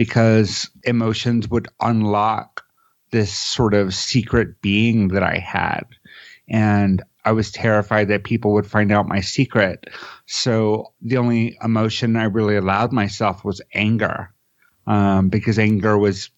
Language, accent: English, American